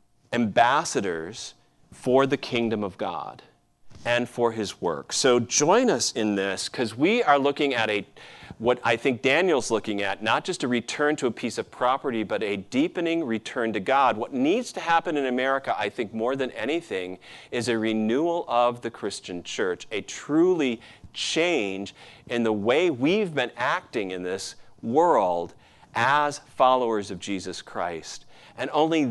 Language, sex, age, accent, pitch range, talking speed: English, male, 40-59, American, 105-145 Hz, 165 wpm